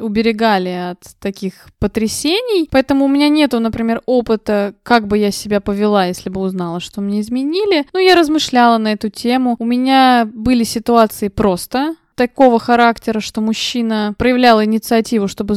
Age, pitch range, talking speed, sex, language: 20-39, 210-265 Hz, 150 wpm, female, Russian